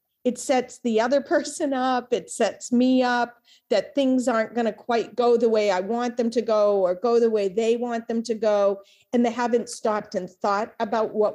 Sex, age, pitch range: female, 40-59, 205-245 Hz